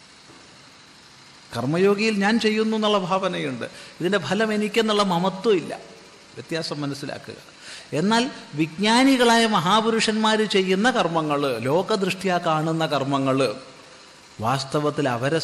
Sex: male